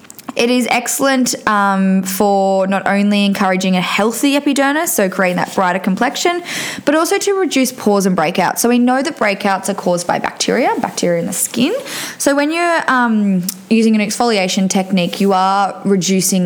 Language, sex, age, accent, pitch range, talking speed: English, female, 10-29, Australian, 185-240 Hz, 170 wpm